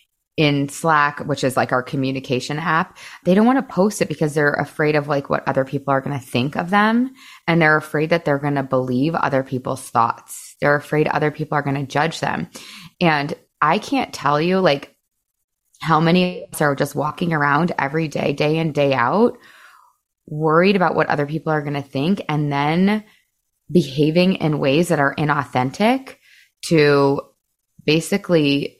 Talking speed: 175 wpm